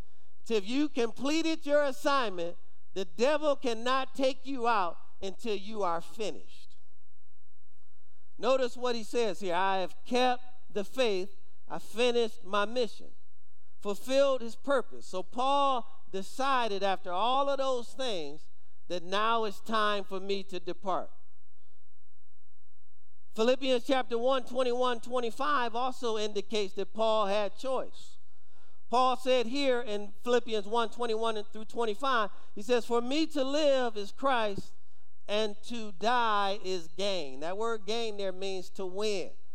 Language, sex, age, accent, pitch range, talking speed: English, male, 50-69, American, 185-250 Hz, 135 wpm